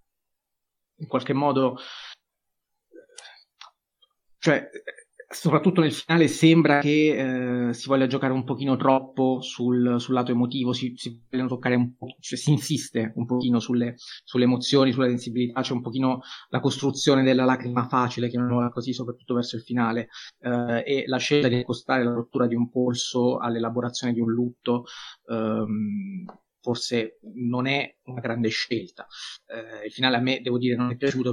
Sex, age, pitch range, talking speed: male, 30-49, 120-135 Hz, 160 wpm